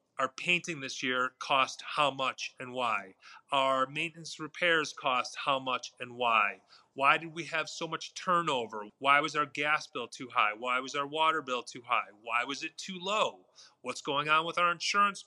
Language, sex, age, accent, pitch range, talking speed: English, male, 30-49, American, 135-165 Hz, 195 wpm